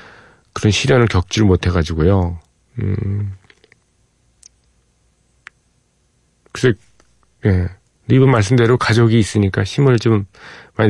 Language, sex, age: Korean, male, 40-59